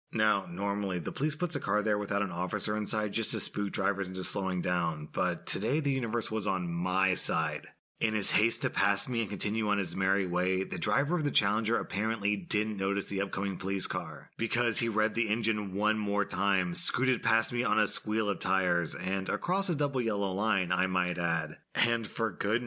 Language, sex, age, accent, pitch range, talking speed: English, male, 30-49, American, 95-120 Hz, 210 wpm